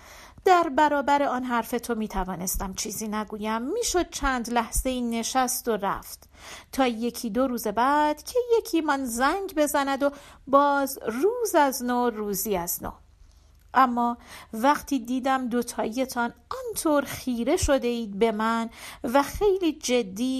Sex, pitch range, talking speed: female, 220-290 Hz, 135 wpm